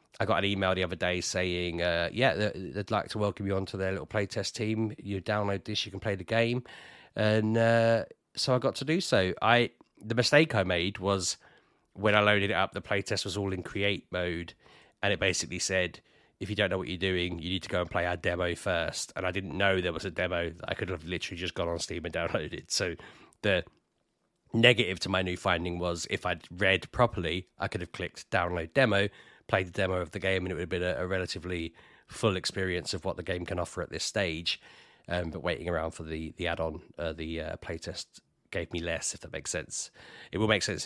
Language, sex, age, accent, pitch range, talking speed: English, male, 30-49, British, 85-105 Hz, 235 wpm